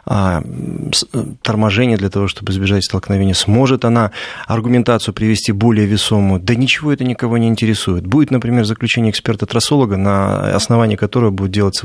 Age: 30-49